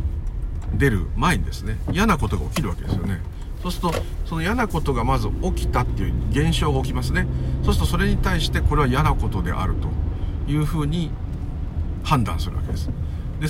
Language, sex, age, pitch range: Japanese, male, 50-69, 80-120 Hz